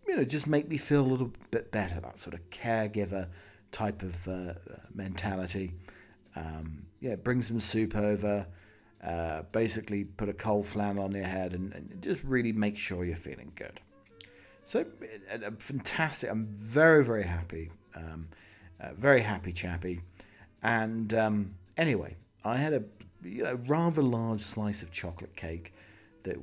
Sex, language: male, English